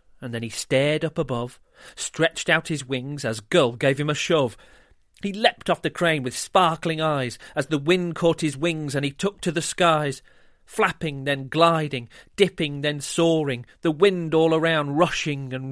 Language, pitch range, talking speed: English, 115-160 Hz, 185 wpm